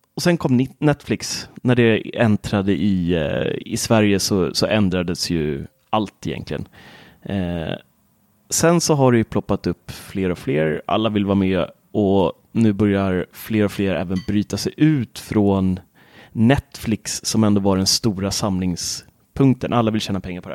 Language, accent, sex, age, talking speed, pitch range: Swedish, native, male, 30-49, 160 wpm, 100-130 Hz